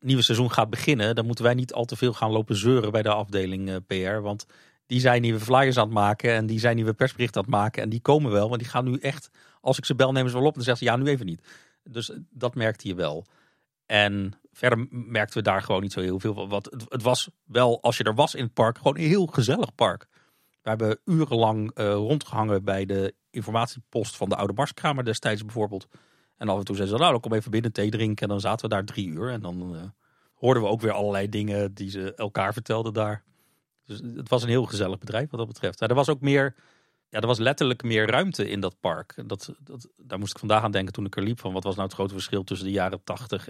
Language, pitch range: Dutch, 105-130 Hz